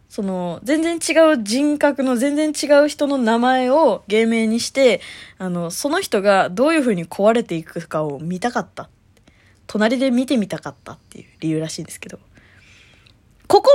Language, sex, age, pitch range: Japanese, female, 20-39, 180-305 Hz